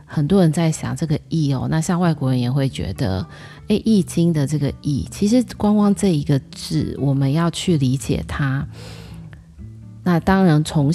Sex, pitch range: female, 135-165 Hz